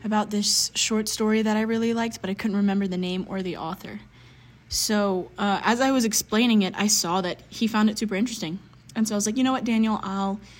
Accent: American